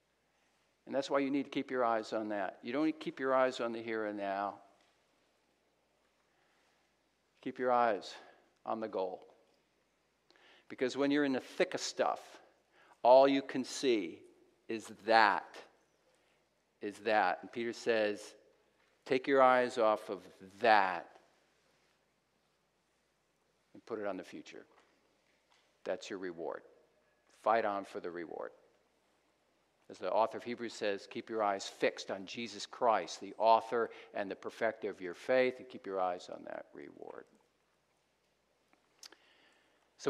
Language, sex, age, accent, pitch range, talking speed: English, male, 50-69, American, 110-155 Hz, 145 wpm